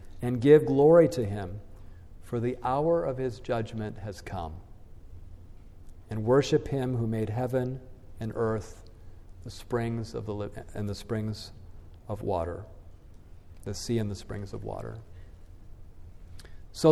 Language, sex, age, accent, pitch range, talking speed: English, male, 50-69, American, 90-130 Hz, 135 wpm